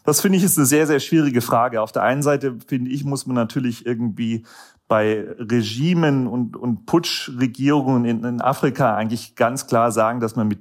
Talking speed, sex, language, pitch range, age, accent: 190 wpm, male, German, 110-135 Hz, 40-59, German